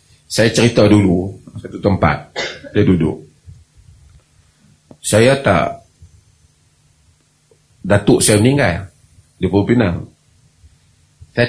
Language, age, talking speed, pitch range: Malay, 40-59, 80 wpm, 90-145 Hz